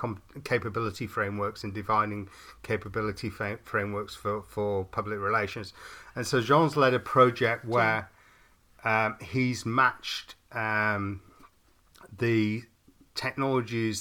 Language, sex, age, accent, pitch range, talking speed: English, male, 40-59, British, 105-120 Hz, 105 wpm